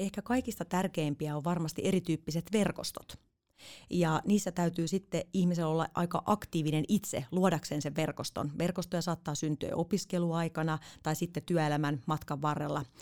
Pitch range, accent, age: 145-170 Hz, native, 30-49